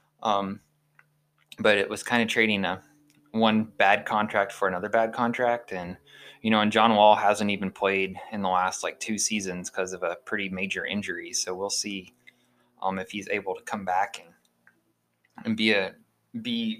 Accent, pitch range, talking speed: American, 95-120 Hz, 180 wpm